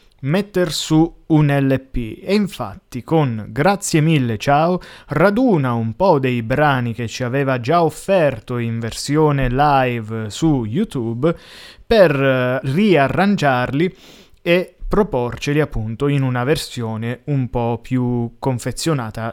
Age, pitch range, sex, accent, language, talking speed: 20-39, 120-160 Hz, male, native, Italian, 115 wpm